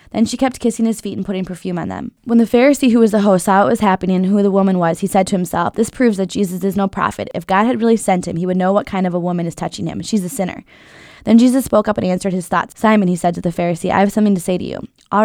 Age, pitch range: 20-39, 180-215 Hz